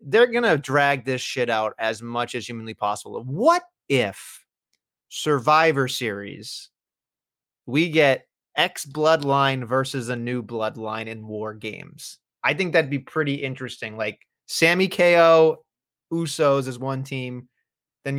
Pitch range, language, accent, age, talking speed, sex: 125-155 Hz, English, American, 30-49, 135 wpm, male